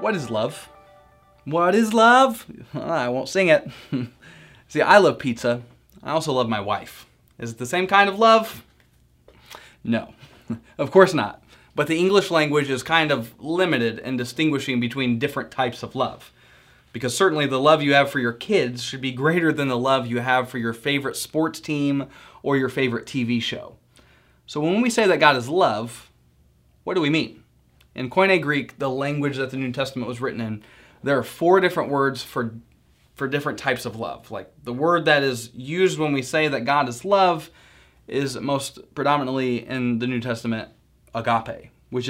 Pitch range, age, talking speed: 120-155 Hz, 20-39, 185 wpm